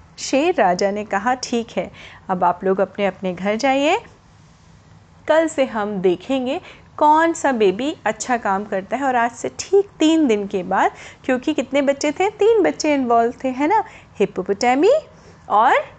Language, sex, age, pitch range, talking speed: Hindi, female, 30-49, 210-305 Hz, 165 wpm